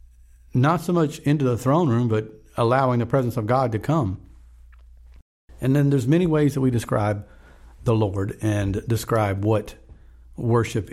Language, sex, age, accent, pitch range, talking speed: English, male, 50-69, American, 105-135 Hz, 160 wpm